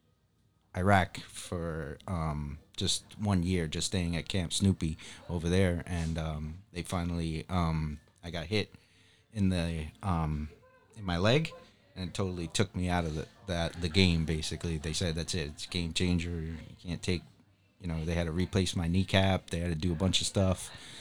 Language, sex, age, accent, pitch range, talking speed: English, male, 30-49, American, 85-95 Hz, 185 wpm